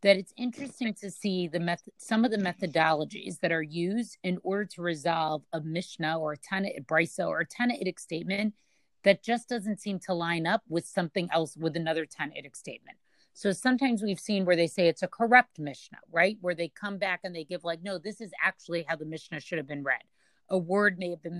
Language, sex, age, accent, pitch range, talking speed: English, female, 40-59, American, 170-210 Hz, 220 wpm